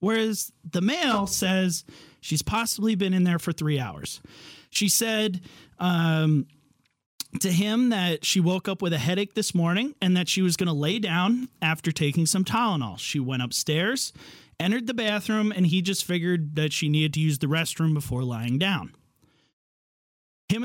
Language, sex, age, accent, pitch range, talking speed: English, male, 30-49, American, 155-205 Hz, 170 wpm